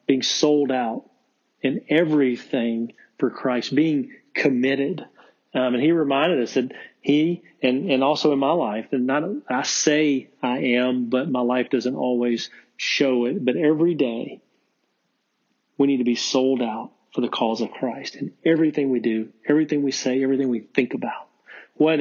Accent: American